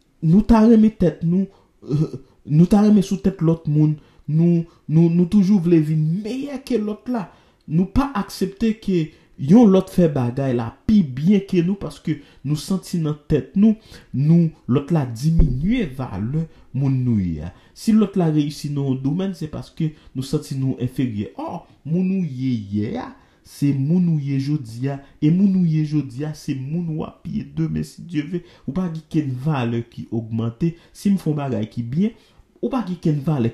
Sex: male